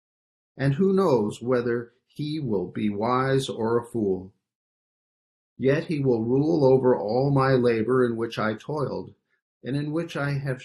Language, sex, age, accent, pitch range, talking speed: English, male, 50-69, American, 115-135 Hz, 160 wpm